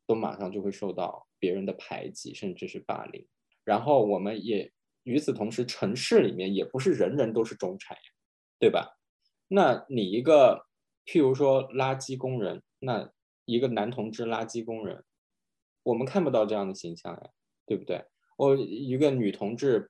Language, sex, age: Chinese, male, 20-39